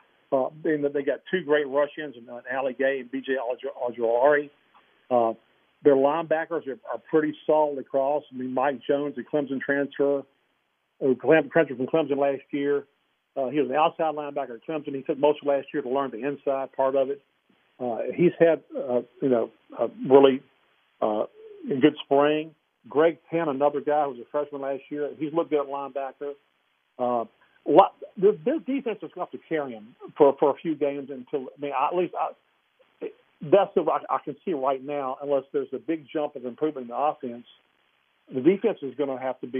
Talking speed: 200 wpm